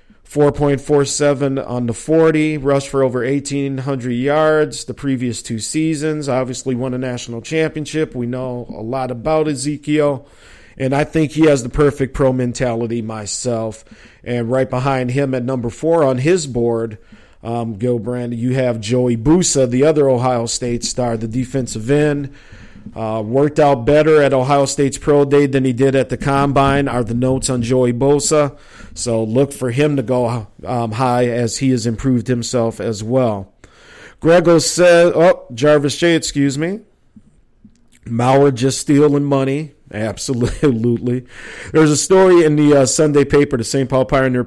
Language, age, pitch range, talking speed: English, 50-69, 120-145 Hz, 160 wpm